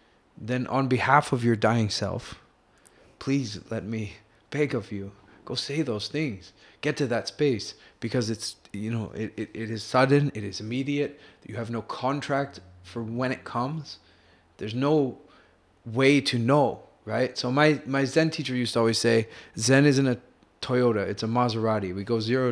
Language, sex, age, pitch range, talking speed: English, male, 30-49, 110-135 Hz, 175 wpm